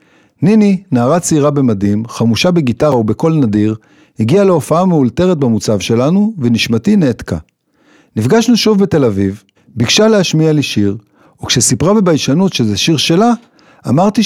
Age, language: 50-69, Hebrew